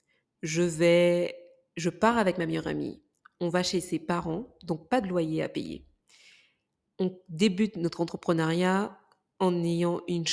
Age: 20-39